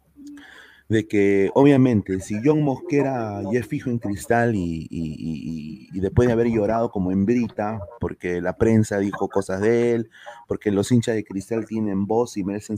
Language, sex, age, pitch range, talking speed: Spanish, male, 30-49, 105-130 Hz, 180 wpm